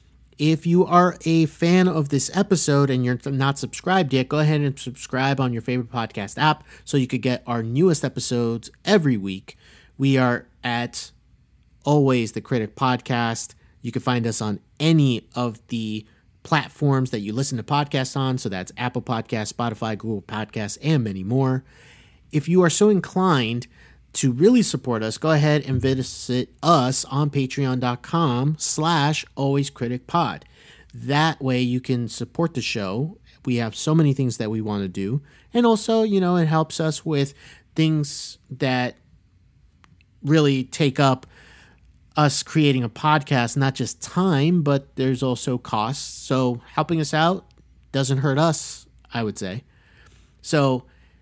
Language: English